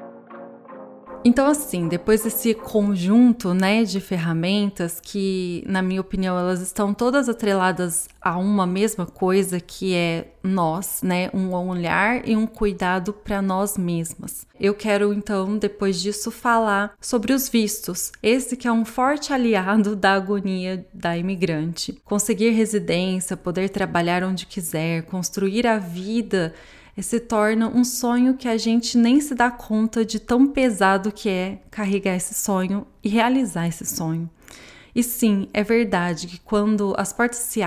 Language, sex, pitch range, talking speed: Portuguese, female, 180-225 Hz, 145 wpm